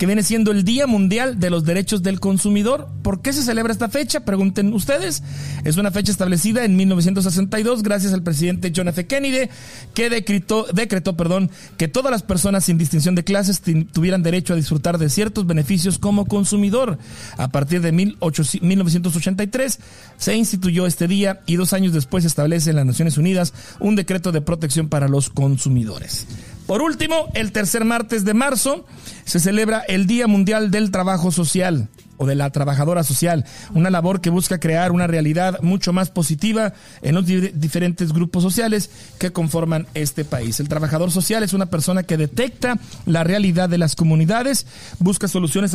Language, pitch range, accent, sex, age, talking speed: Spanish, 160-200 Hz, Mexican, male, 40-59, 170 wpm